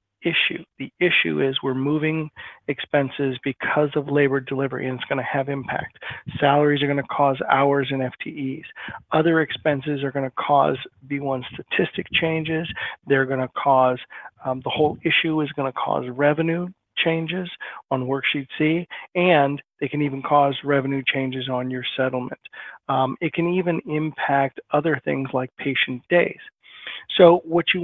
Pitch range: 135-155 Hz